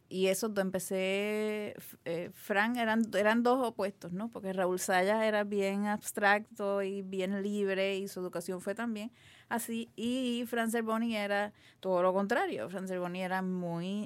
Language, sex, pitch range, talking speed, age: English, female, 170-205 Hz, 160 wpm, 30-49